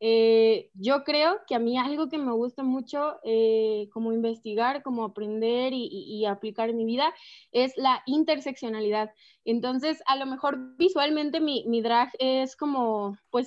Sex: female